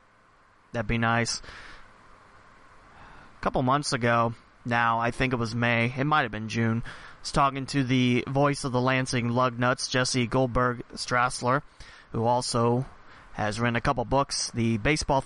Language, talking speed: English, 155 wpm